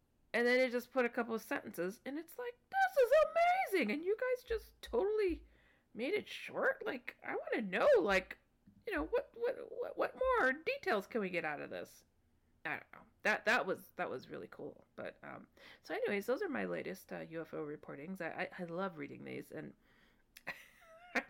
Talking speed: 200 wpm